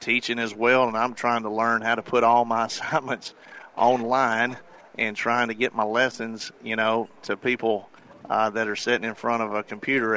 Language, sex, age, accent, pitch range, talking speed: English, male, 50-69, American, 110-125 Hz, 200 wpm